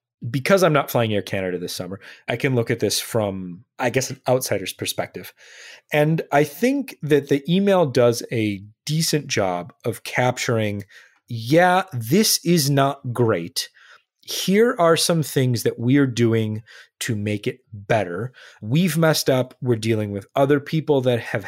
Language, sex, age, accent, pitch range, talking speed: English, male, 30-49, American, 110-160 Hz, 160 wpm